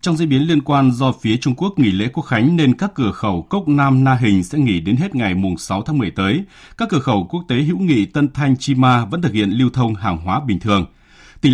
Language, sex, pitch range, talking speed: Vietnamese, male, 105-145 Hz, 270 wpm